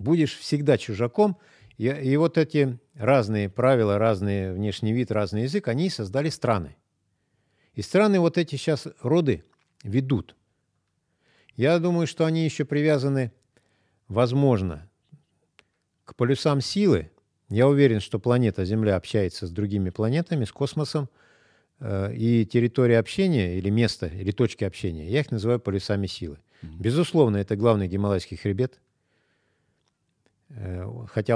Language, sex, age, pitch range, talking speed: Russian, male, 50-69, 100-135 Hz, 120 wpm